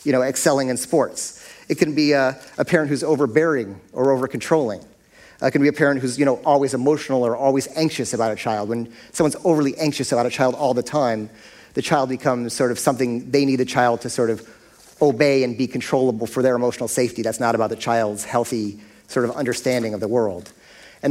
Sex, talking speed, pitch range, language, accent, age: male, 215 wpm, 120-145 Hz, English, American, 40-59